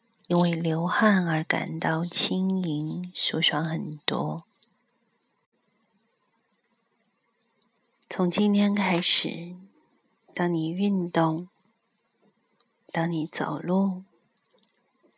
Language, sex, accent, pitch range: Chinese, female, native, 165-210 Hz